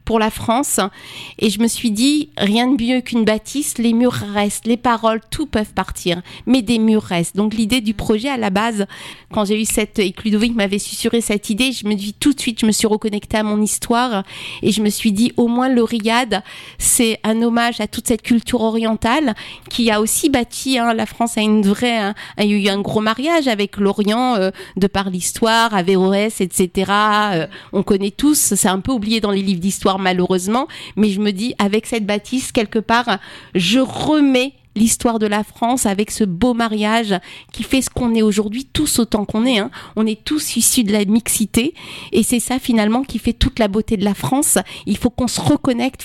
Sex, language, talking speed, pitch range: female, French, 215 wpm, 205-240 Hz